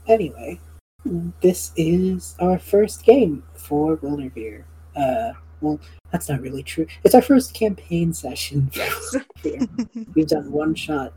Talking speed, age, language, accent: 125 wpm, 40-59, English, American